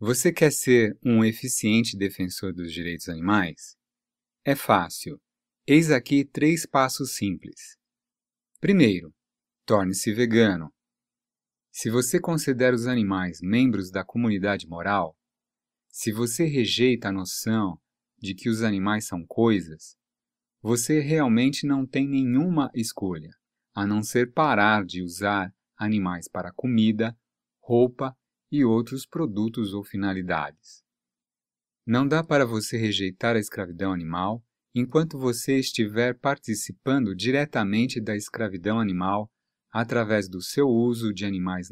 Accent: Brazilian